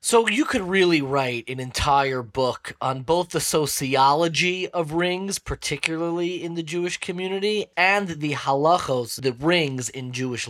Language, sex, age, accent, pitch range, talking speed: English, male, 30-49, American, 130-165 Hz, 150 wpm